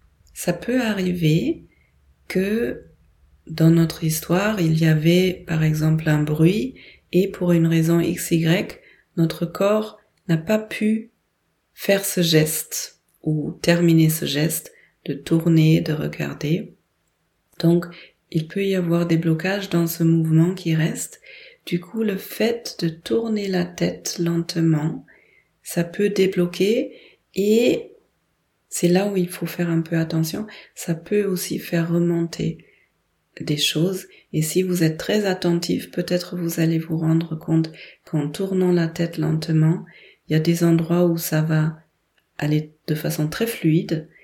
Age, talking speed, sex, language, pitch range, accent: 30-49, 145 wpm, female, French, 155-185 Hz, French